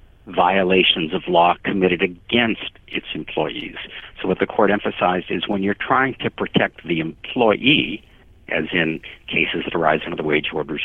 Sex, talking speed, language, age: male, 160 wpm, English, 60-79